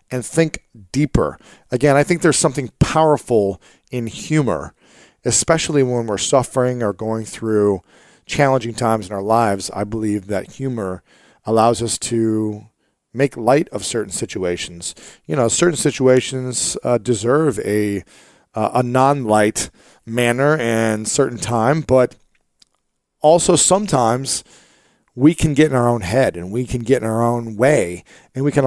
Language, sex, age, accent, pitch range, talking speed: English, male, 40-59, American, 110-150 Hz, 145 wpm